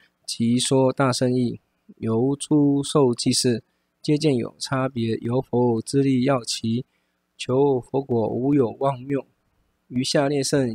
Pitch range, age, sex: 120-140 Hz, 20-39, male